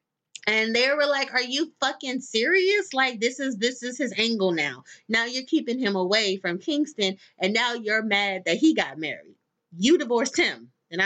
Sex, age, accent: female, 30-49, American